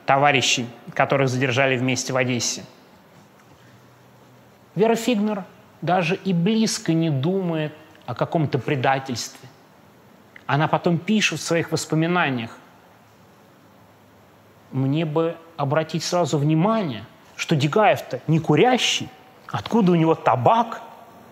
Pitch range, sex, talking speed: 135-175 Hz, male, 100 wpm